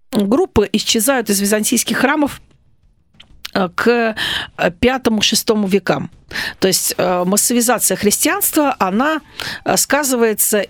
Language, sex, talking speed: Russian, female, 80 wpm